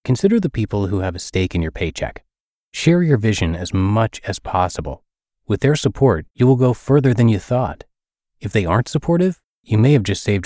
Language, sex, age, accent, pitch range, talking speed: English, male, 30-49, American, 90-130 Hz, 205 wpm